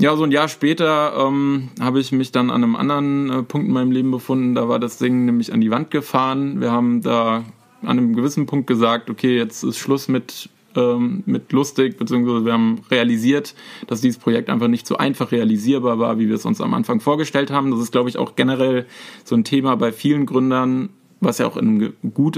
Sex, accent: male, German